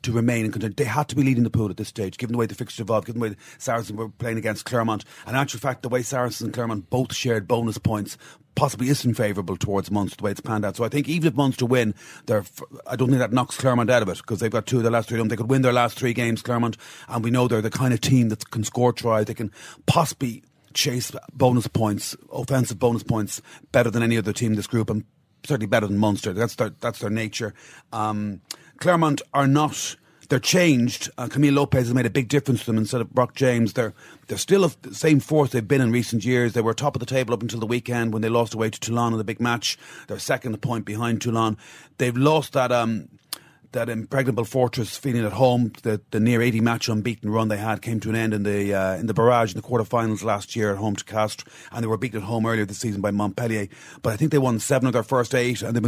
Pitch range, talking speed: 110-130 Hz, 260 wpm